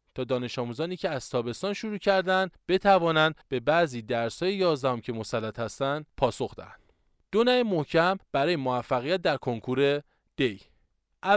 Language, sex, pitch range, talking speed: Persian, male, 130-185 Hz, 135 wpm